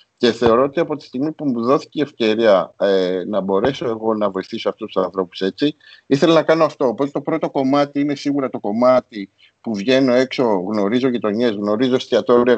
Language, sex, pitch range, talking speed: Greek, male, 105-135 Hz, 185 wpm